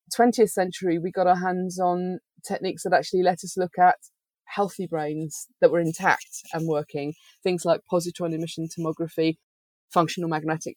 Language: English